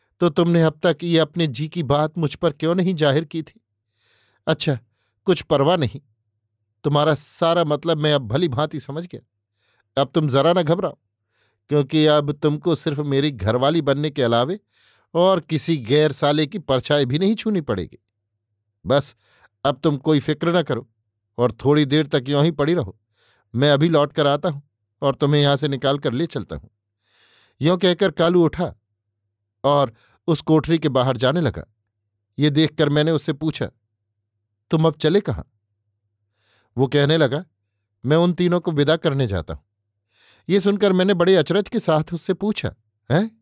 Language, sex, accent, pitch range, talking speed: Hindi, male, native, 110-165 Hz, 170 wpm